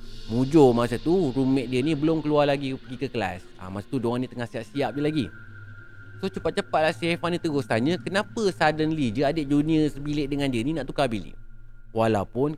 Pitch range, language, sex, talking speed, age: 105-150 Hz, Malay, male, 200 wpm, 30-49